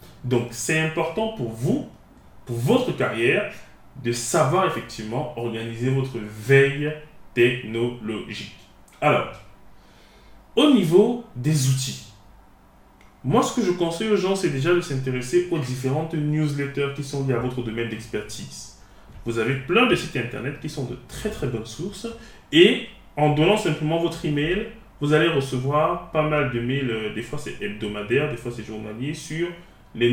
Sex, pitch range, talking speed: male, 120-165 Hz, 155 wpm